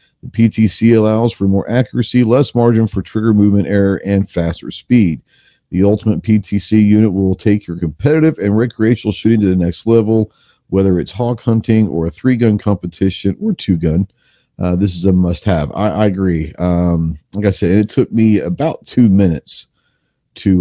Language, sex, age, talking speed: English, male, 40-59, 165 wpm